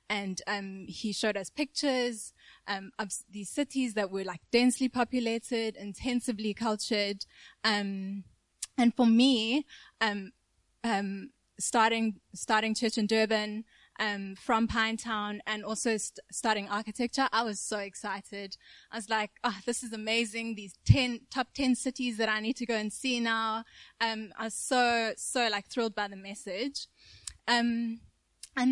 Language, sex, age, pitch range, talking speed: English, female, 20-39, 205-235 Hz, 150 wpm